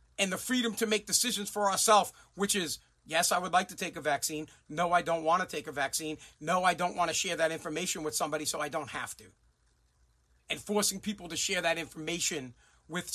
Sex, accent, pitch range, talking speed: male, American, 150-215 Hz, 225 wpm